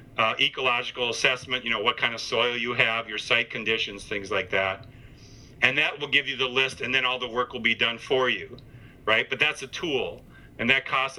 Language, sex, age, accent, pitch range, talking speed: English, male, 40-59, American, 120-140 Hz, 225 wpm